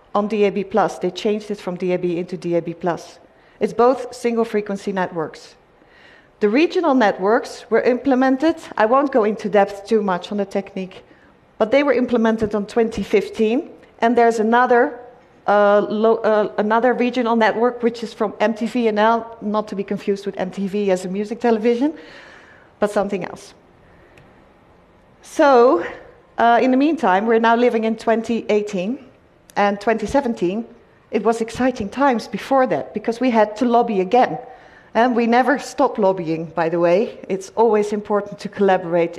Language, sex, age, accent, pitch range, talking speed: English, female, 40-59, Dutch, 200-245 Hz, 155 wpm